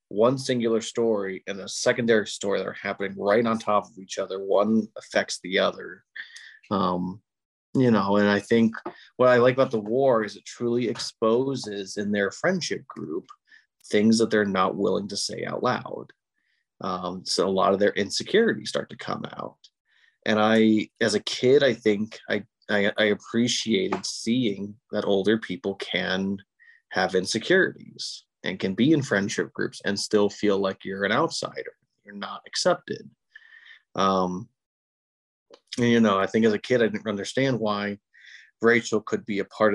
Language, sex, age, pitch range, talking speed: English, male, 30-49, 100-120 Hz, 170 wpm